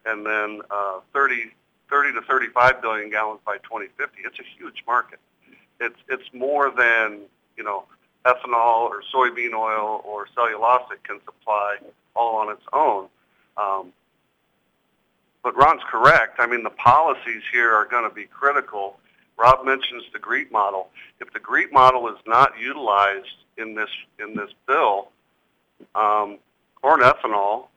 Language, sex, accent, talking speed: English, male, American, 145 wpm